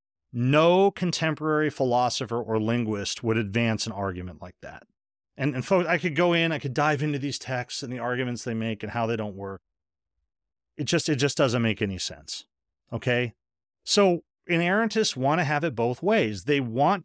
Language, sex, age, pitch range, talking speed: English, male, 40-59, 110-145 Hz, 185 wpm